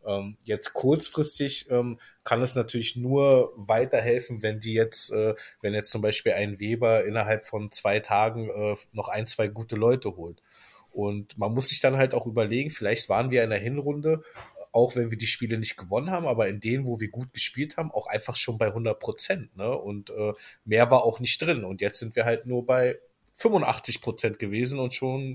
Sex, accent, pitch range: male, German, 105-130 Hz